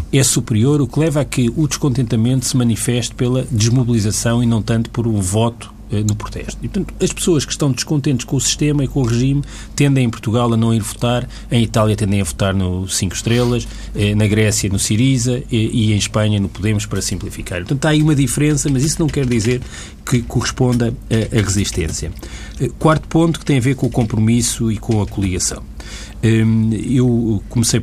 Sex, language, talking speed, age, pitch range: male, Portuguese, 200 wpm, 40-59, 105-130 Hz